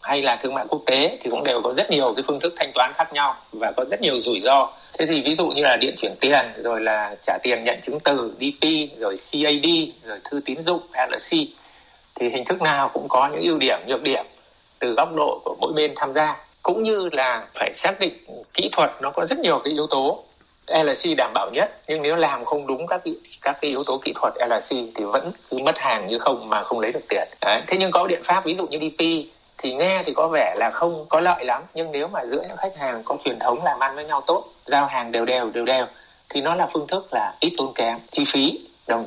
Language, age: Vietnamese, 60-79